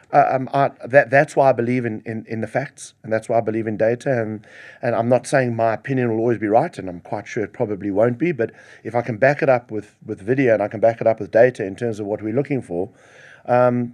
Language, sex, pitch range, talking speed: English, male, 115-130 Hz, 280 wpm